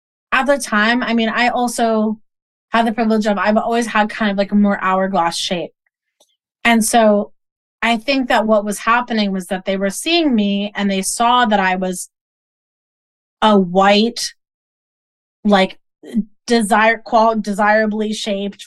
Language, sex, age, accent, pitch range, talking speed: English, female, 20-39, American, 205-245 Hz, 155 wpm